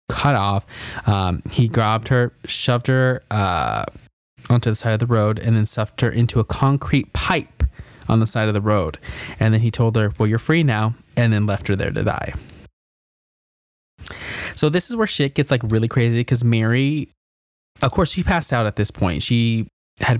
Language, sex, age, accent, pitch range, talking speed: English, male, 20-39, American, 105-125 Hz, 195 wpm